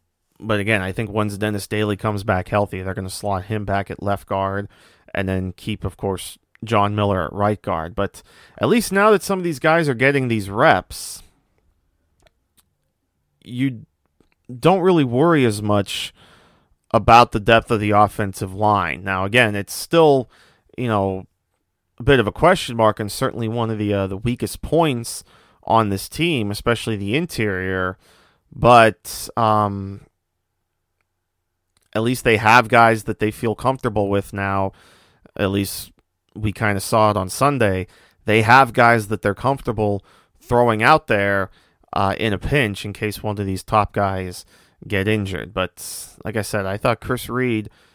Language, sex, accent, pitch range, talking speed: English, male, American, 95-115 Hz, 165 wpm